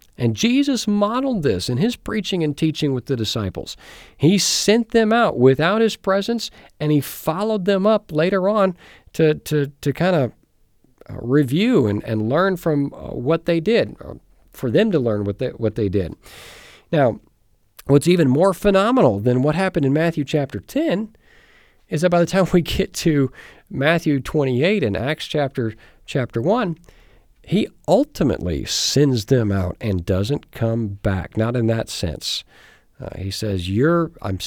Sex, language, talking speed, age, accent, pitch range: male, English, 160 wpm, 50-69, American, 105-170 Hz